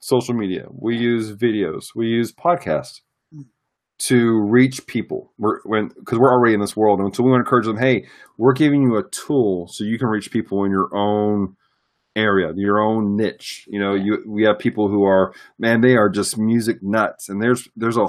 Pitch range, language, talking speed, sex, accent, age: 100-125 Hz, English, 205 wpm, male, American, 40-59